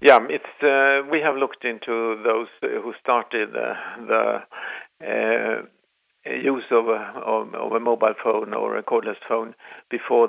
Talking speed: 145 wpm